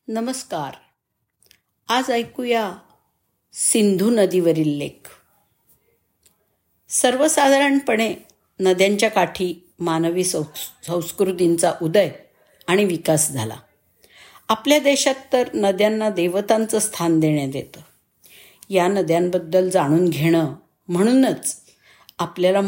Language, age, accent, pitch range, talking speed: Marathi, 50-69, native, 170-230 Hz, 75 wpm